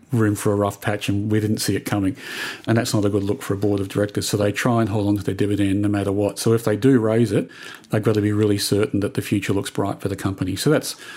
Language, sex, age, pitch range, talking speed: English, male, 40-59, 105-125 Hz, 300 wpm